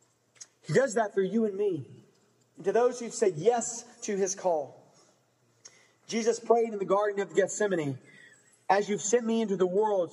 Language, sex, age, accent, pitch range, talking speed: English, male, 40-59, American, 200-265 Hz, 165 wpm